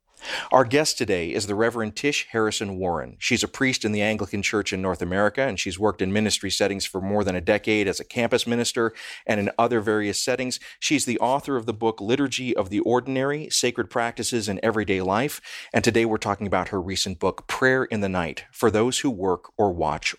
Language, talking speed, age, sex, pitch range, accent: English, 215 wpm, 40-59, male, 100-125 Hz, American